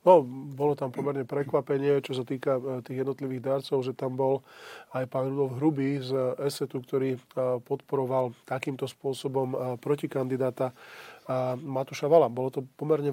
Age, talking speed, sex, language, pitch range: 20-39, 140 wpm, male, Slovak, 135-160 Hz